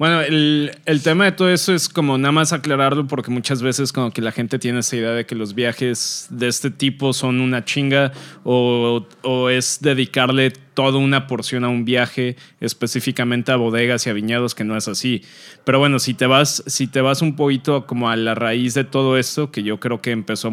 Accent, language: Mexican, Spanish